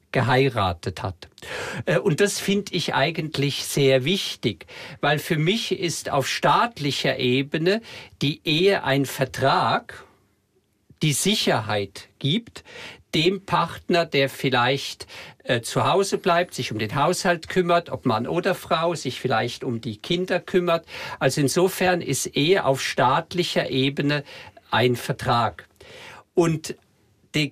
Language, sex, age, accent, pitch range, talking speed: German, male, 50-69, German, 130-175 Hz, 125 wpm